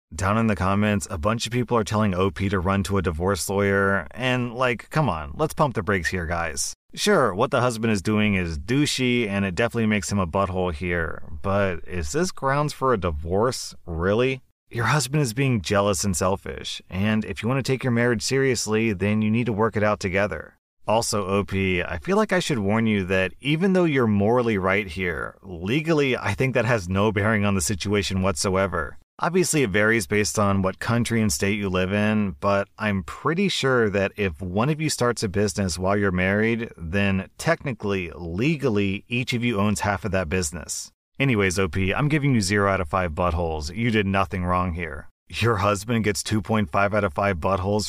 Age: 30-49